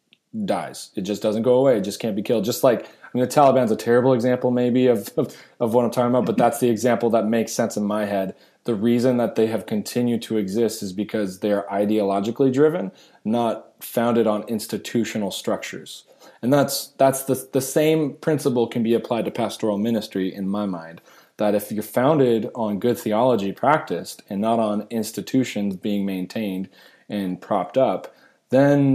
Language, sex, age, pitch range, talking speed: English, male, 20-39, 105-125 Hz, 185 wpm